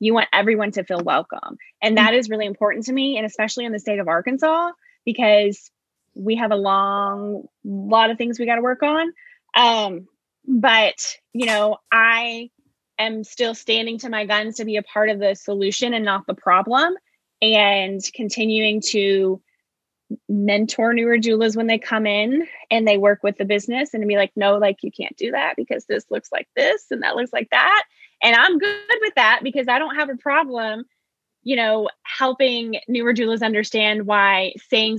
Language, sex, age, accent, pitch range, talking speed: English, female, 10-29, American, 205-260 Hz, 190 wpm